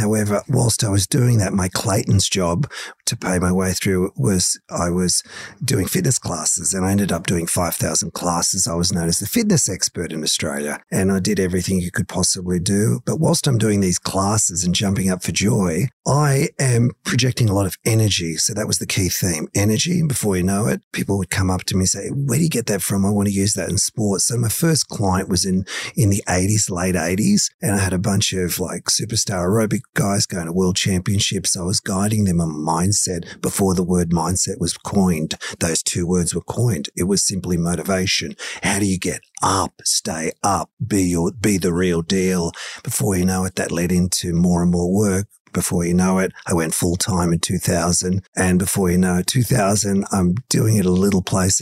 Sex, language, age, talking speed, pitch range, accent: male, English, 40-59, 215 wpm, 90-105 Hz, Australian